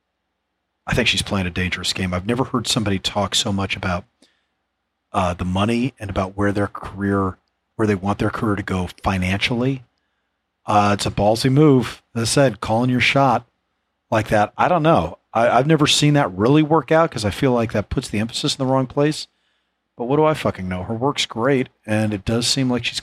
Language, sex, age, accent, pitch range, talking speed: English, male, 40-59, American, 95-125 Hz, 210 wpm